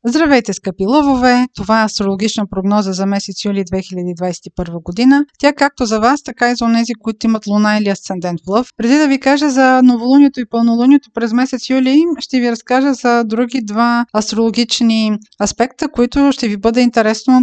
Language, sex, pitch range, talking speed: Bulgarian, female, 210-250 Hz, 175 wpm